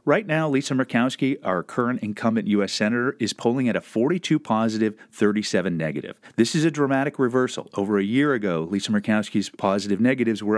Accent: American